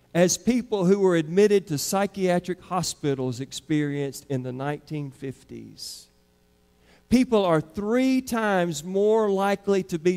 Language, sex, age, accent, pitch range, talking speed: English, male, 50-69, American, 150-205 Hz, 120 wpm